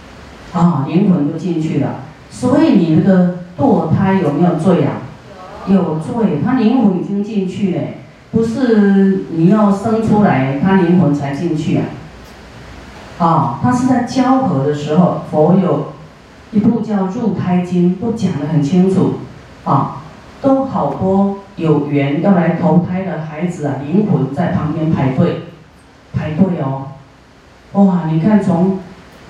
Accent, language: native, Chinese